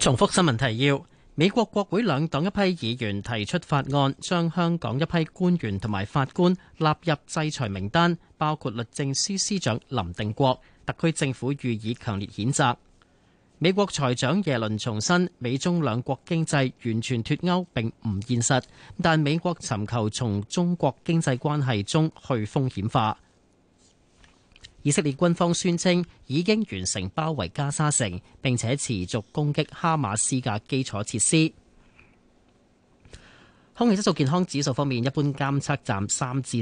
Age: 30-49